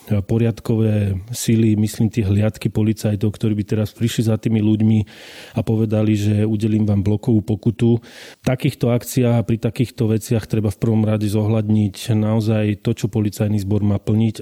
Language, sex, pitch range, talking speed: Slovak, male, 105-120 Hz, 160 wpm